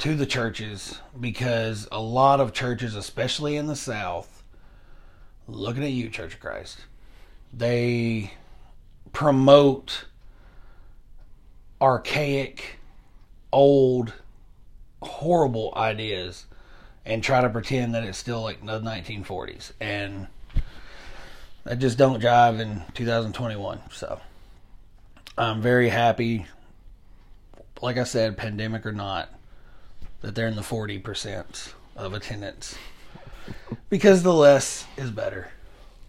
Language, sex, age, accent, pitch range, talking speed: English, male, 30-49, American, 100-125 Hz, 105 wpm